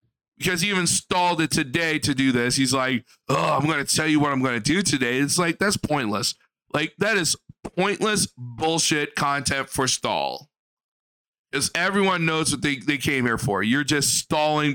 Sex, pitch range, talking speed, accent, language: male, 125-165 Hz, 185 wpm, American, English